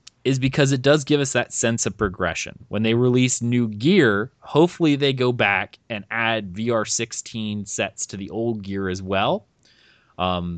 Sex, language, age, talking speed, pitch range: male, English, 20-39, 175 wpm, 100-130 Hz